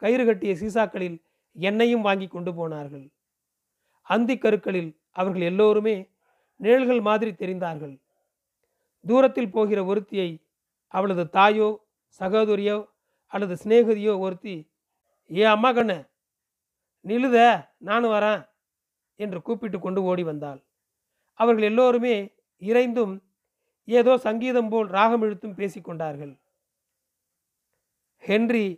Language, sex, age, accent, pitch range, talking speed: Tamil, male, 40-59, native, 185-225 Hz, 90 wpm